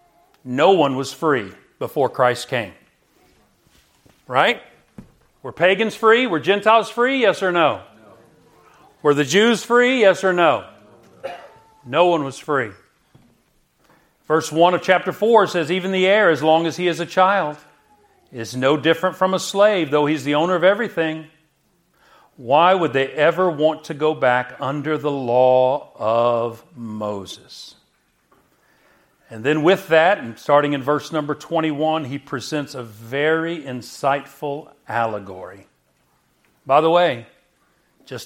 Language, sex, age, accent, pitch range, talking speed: English, male, 50-69, American, 130-175 Hz, 140 wpm